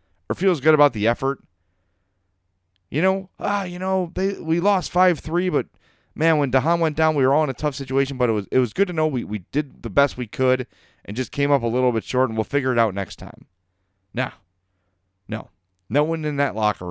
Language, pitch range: English, 95-140 Hz